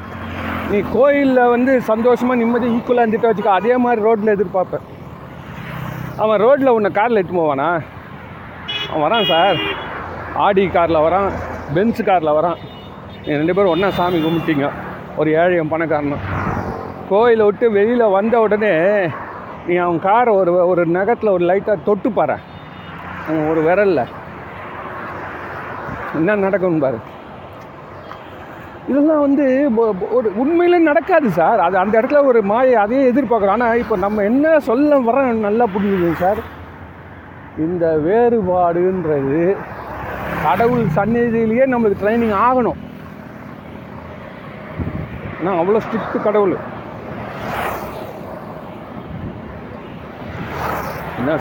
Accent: native